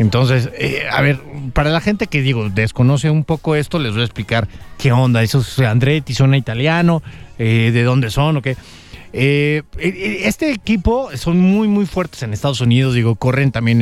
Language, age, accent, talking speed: English, 40-59, Mexican, 185 wpm